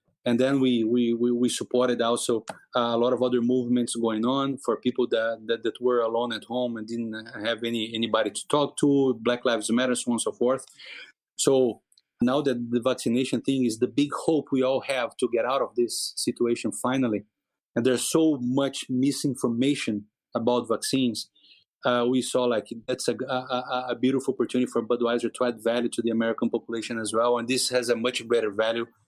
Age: 30-49